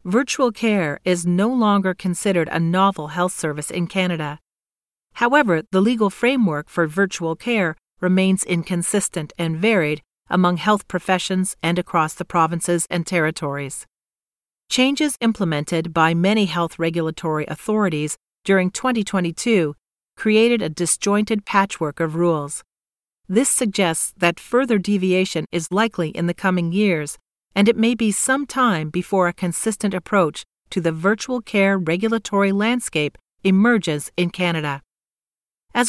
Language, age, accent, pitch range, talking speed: English, 40-59, American, 165-210 Hz, 130 wpm